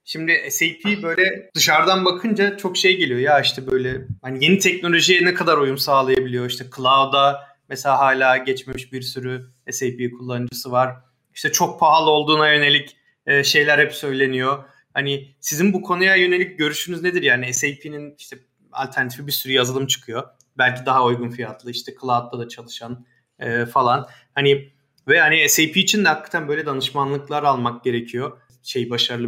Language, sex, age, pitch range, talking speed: Turkish, male, 30-49, 125-150 Hz, 150 wpm